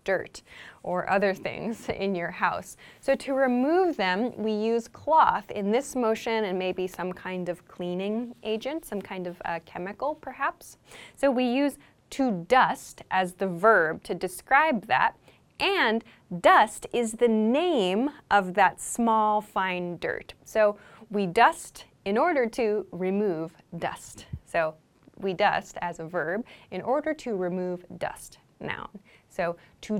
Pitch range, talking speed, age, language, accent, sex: 195-270 Hz, 145 wpm, 20-39, English, American, female